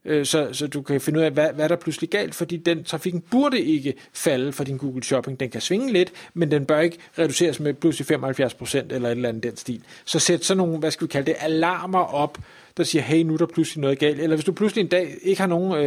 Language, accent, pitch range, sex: Danish, native, 150-190 Hz, male